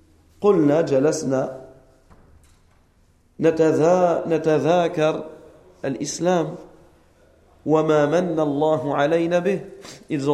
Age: 40-59